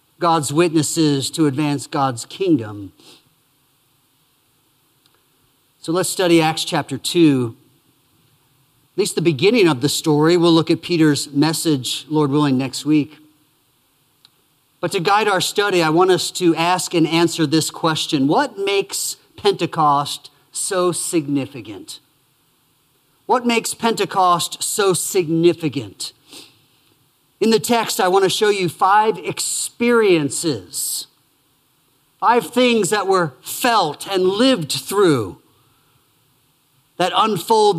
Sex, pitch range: male, 145-210 Hz